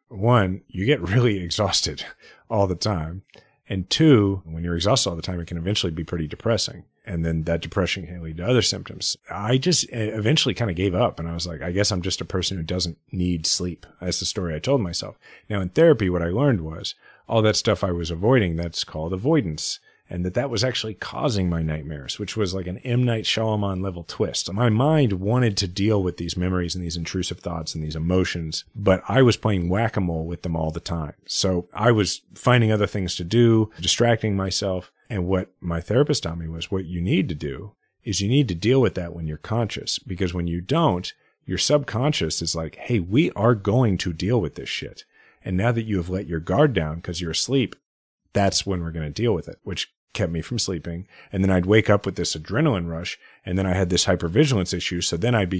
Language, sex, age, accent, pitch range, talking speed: English, male, 30-49, American, 85-110 Hz, 225 wpm